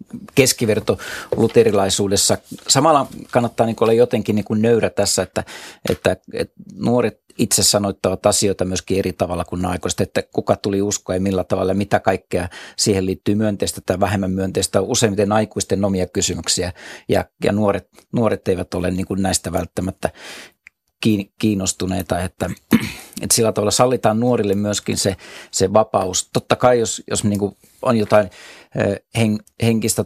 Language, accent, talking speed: Finnish, native, 145 wpm